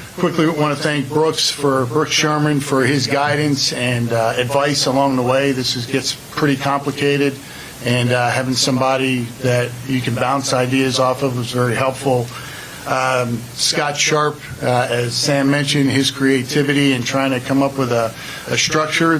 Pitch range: 125-145 Hz